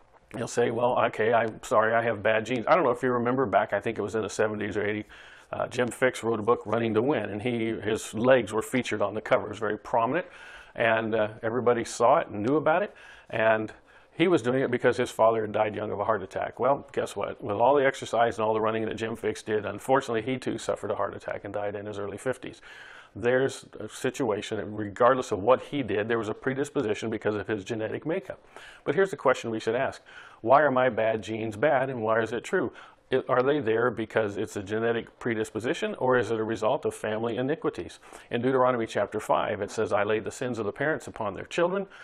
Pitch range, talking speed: 110-125 Hz, 240 wpm